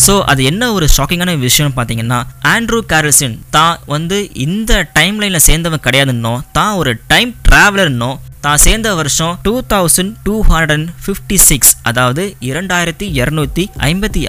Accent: native